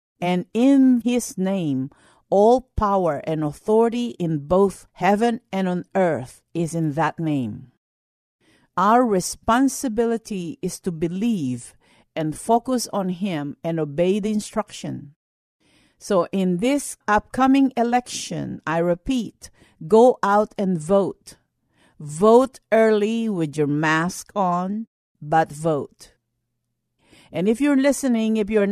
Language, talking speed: English, 115 wpm